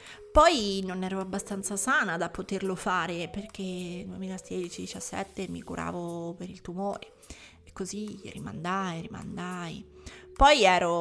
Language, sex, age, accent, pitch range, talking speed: Italian, female, 30-49, native, 185-240 Hz, 115 wpm